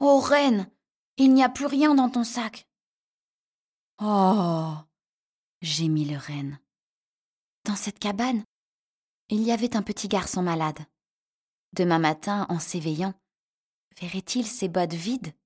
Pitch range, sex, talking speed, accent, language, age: 165-210 Hz, female, 125 wpm, French, French, 20-39